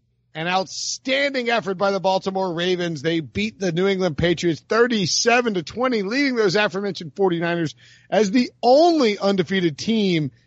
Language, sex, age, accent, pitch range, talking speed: English, male, 40-59, American, 135-180 Hz, 145 wpm